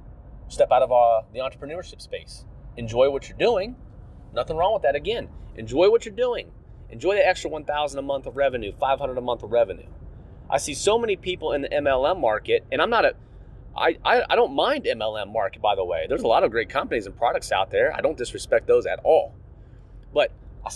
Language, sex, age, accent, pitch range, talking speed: English, male, 30-49, American, 115-175 Hz, 215 wpm